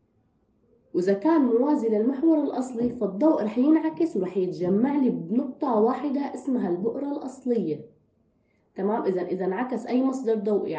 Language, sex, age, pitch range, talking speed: Arabic, female, 20-39, 200-270 Hz, 130 wpm